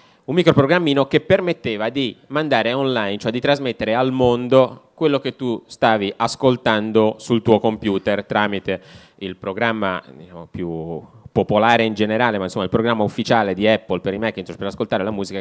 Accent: native